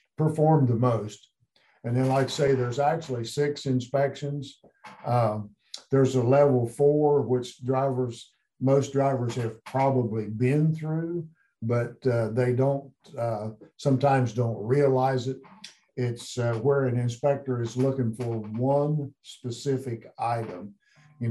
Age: 50-69